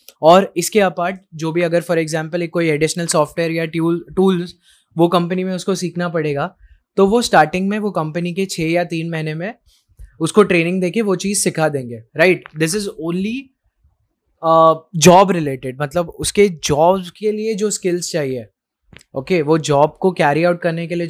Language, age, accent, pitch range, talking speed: Hindi, 20-39, native, 155-185 Hz, 180 wpm